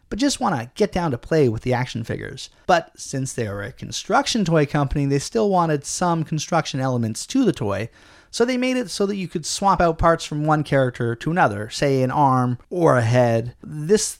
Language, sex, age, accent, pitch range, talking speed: English, male, 30-49, American, 130-180 Hz, 220 wpm